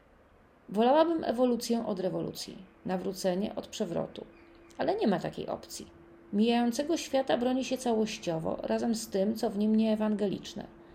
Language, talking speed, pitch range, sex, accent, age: Polish, 135 wpm, 200-250 Hz, female, native, 30-49